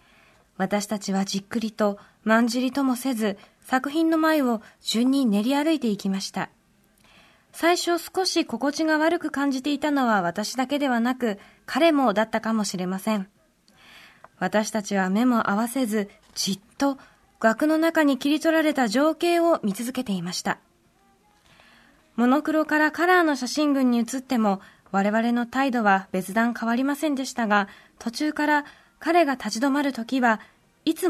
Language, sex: Japanese, female